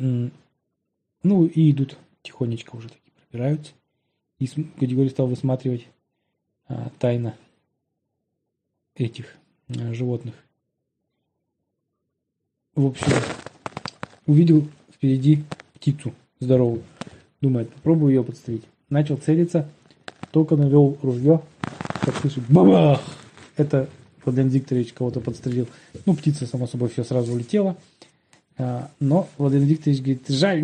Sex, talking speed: male, 100 wpm